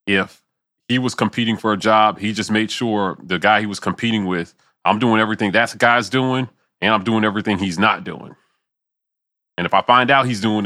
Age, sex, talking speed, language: 30-49, male, 210 wpm, English